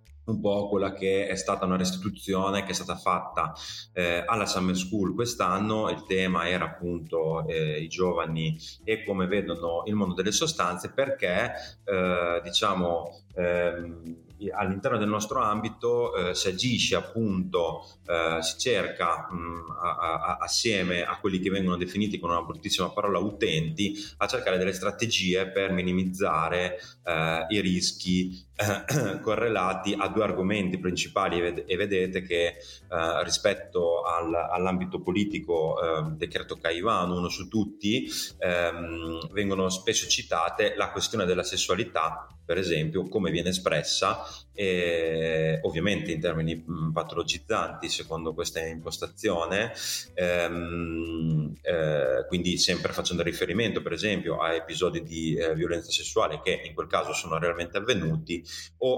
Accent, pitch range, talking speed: native, 85-100 Hz, 130 wpm